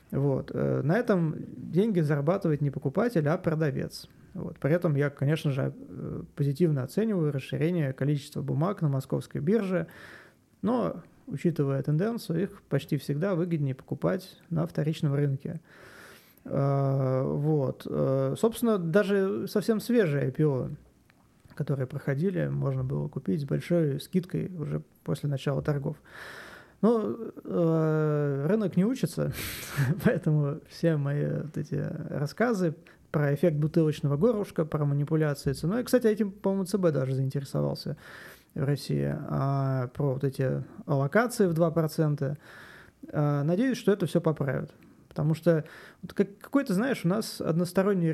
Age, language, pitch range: 20-39, Turkish, 140-185 Hz